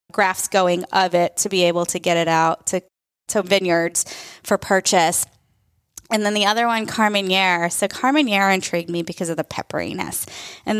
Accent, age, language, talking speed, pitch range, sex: American, 20-39, English, 170 wpm, 190-230 Hz, female